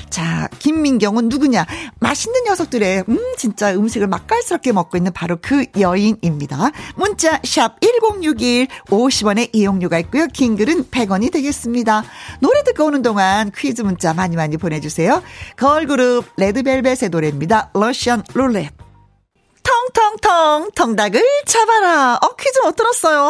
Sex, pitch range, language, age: female, 195-305 Hz, Korean, 40-59